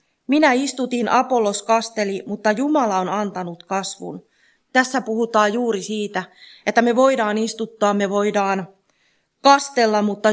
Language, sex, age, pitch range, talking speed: Finnish, female, 30-49, 185-225 Hz, 120 wpm